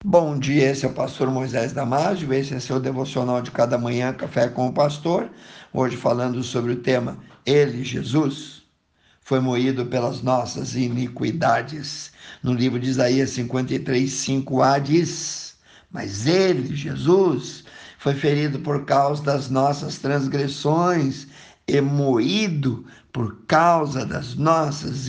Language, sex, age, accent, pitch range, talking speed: Portuguese, male, 60-79, Brazilian, 130-160 Hz, 130 wpm